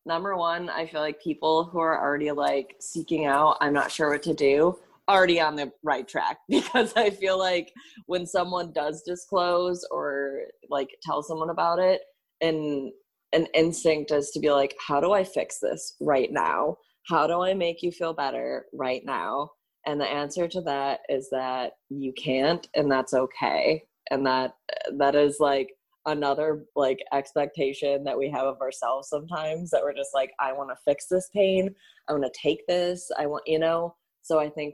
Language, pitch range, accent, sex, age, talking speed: English, 145-175 Hz, American, female, 20-39, 185 wpm